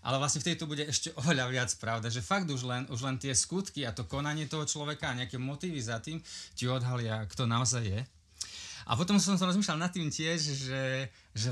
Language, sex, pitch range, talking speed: Slovak, male, 100-135 Hz, 225 wpm